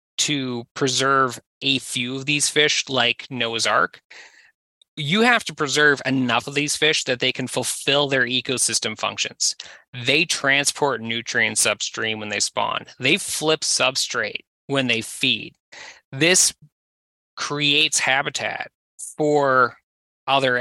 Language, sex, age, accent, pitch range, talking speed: English, male, 20-39, American, 120-145 Hz, 125 wpm